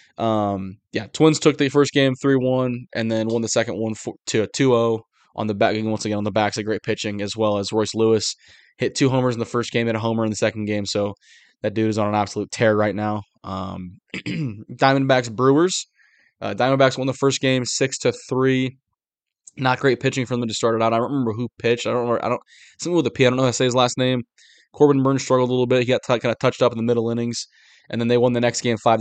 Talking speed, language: 265 wpm, English